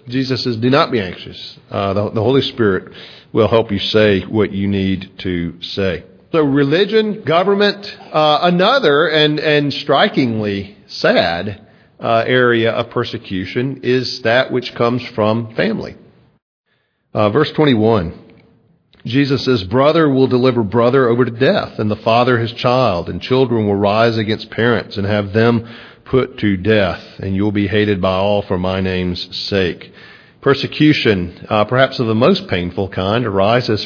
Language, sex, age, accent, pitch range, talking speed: English, male, 50-69, American, 100-125 Hz, 155 wpm